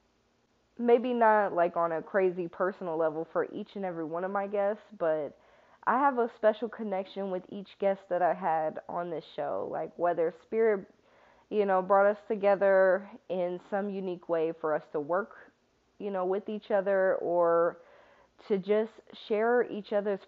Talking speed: 170 wpm